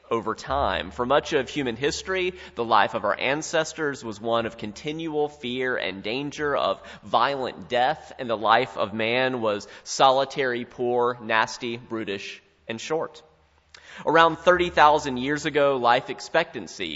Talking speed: 140 wpm